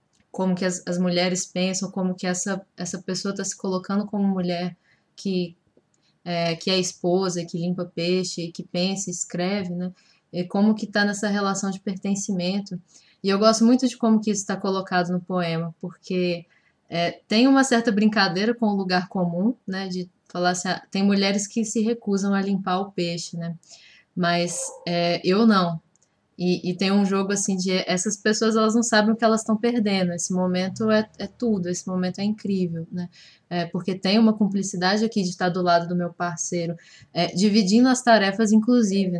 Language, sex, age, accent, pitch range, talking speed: Portuguese, female, 10-29, Brazilian, 180-205 Hz, 185 wpm